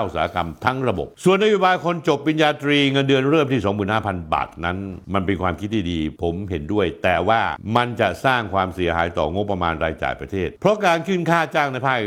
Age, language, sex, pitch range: 60-79, Thai, male, 100-145 Hz